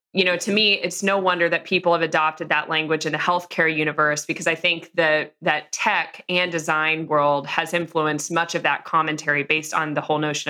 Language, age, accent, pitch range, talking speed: English, 20-39, American, 160-190 Hz, 205 wpm